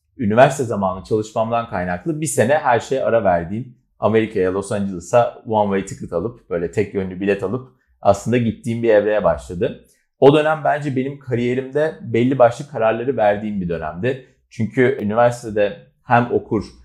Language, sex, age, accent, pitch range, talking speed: Turkish, male, 40-59, native, 100-125 Hz, 150 wpm